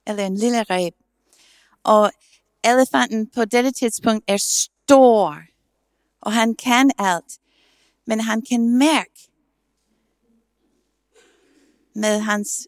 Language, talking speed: English, 100 wpm